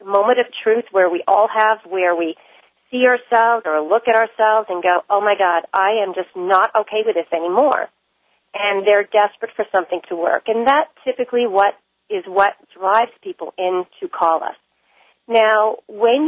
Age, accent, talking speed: 40-59, American, 180 wpm